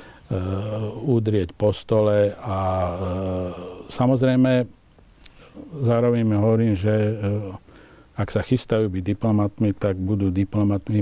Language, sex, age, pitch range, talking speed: Slovak, male, 50-69, 95-110 Hz, 105 wpm